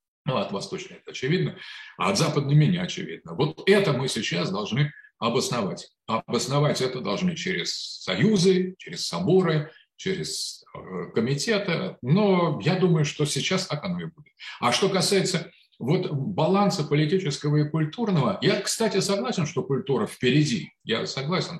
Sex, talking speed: male, 135 wpm